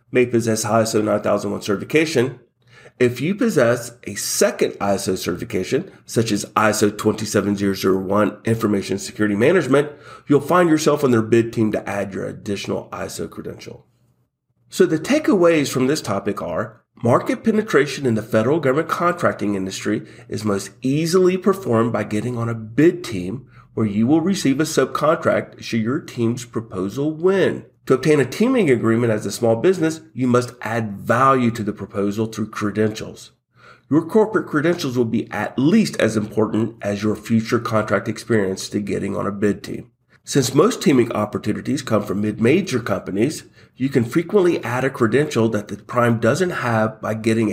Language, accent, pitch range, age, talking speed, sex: English, American, 105-135 Hz, 40-59, 160 wpm, male